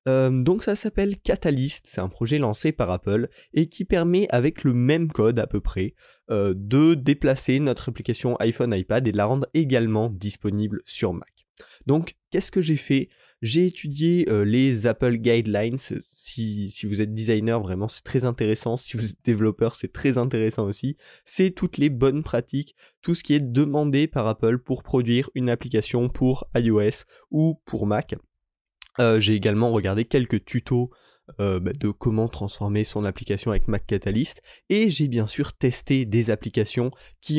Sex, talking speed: male, 175 wpm